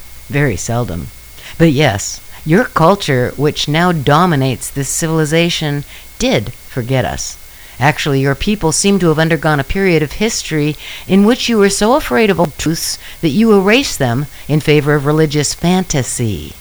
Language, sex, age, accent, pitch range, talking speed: English, female, 60-79, American, 125-175 Hz, 155 wpm